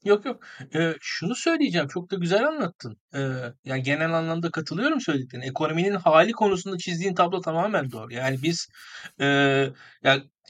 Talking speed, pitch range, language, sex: 150 wpm, 150-220 Hz, Turkish, male